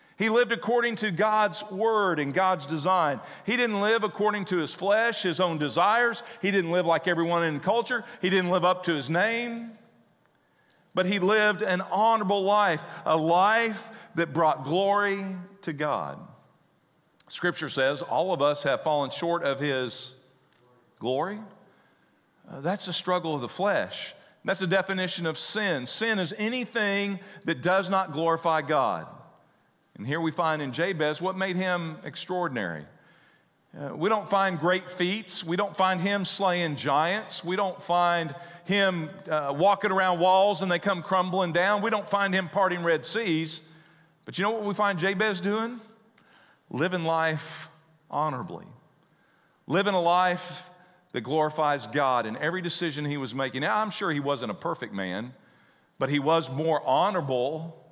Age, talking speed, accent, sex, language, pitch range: 50-69, 160 wpm, American, male, English, 160-200 Hz